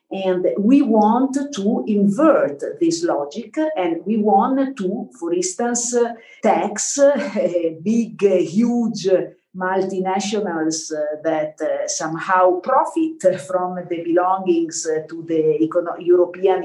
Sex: female